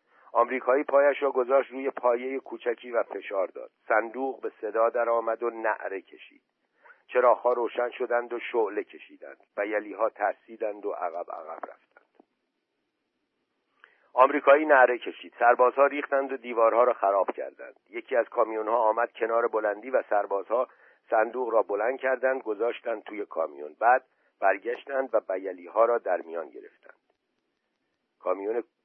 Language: Persian